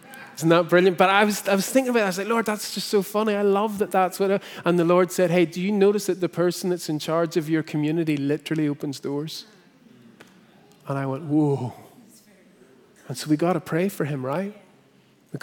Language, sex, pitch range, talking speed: English, male, 155-200 Hz, 230 wpm